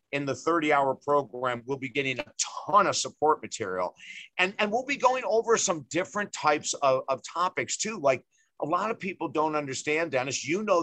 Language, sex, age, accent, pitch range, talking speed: English, male, 50-69, American, 135-165 Hz, 195 wpm